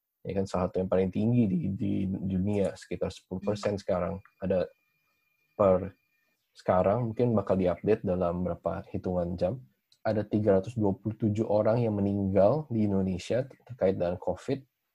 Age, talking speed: 20-39, 135 wpm